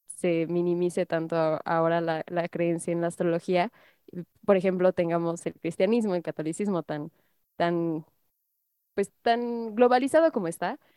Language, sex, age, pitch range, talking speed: Spanish, female, 20-39, 175-225 Hz, 120 wpm